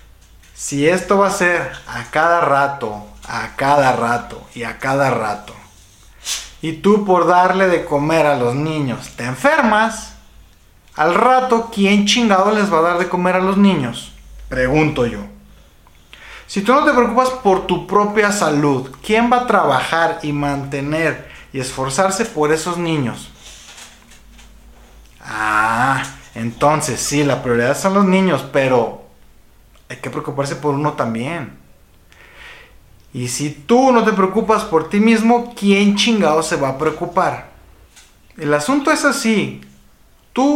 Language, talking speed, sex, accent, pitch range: Spanish, 140 wpm, male, Mexican, 125-185 Hz